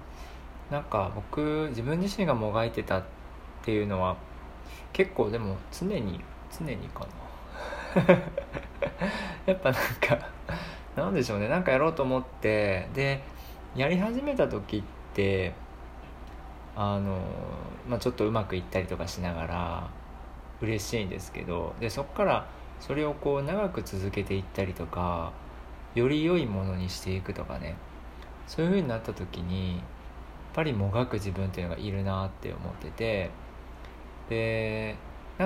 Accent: native